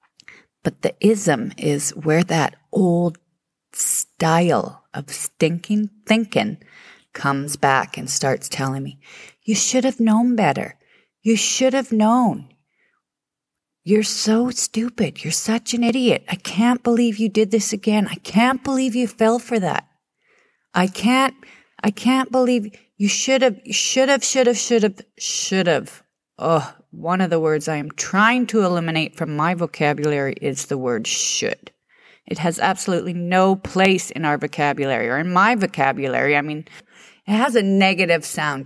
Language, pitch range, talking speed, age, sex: English, 155-230 Hz, 155 wpm, 40-59, female